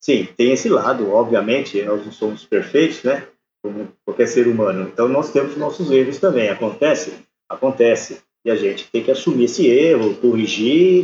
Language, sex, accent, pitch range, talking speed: Portuguese, male, Brazilian, 115-155 Hz, 170 wpm